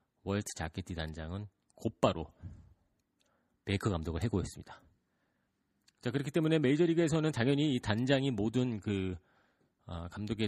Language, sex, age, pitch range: Korean, male, 40-59, 90-125 Hz